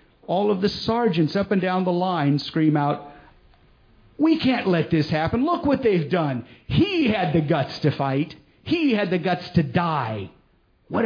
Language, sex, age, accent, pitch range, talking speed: English, male, 50-69, American, 145-205 Hz, 180 wpm